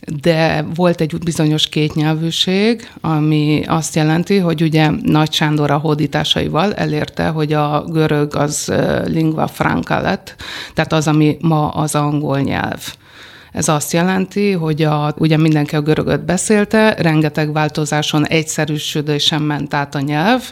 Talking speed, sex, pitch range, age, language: 135 wpm, female, 150-165 Hz, 50-69, Hungarian